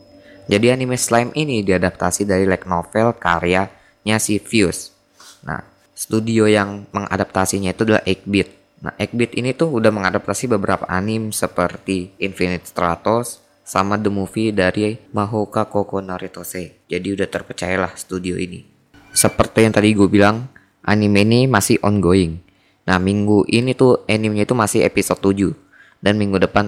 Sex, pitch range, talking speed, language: female, 95-115 Hz, 140 wpm, Indonesian